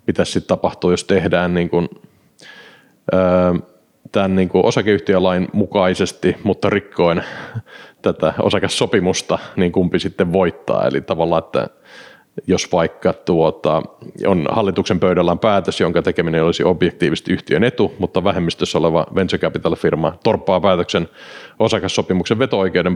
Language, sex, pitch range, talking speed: Finnish, male, 85-100 Hz, 120 wpm